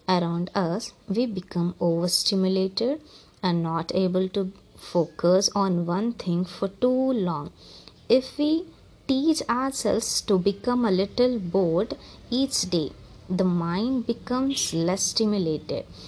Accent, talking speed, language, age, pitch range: Indian, 120 wpm, English, 20-39, 180-235 Hz